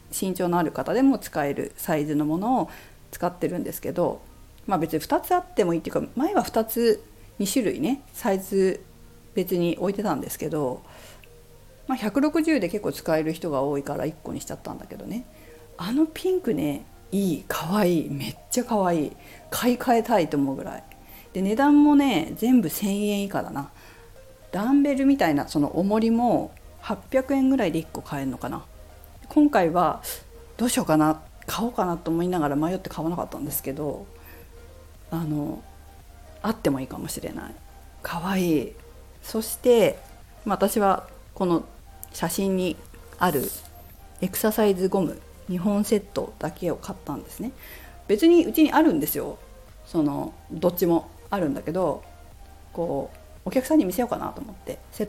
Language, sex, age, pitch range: Japanese, female, 50-69, 150-250 Hz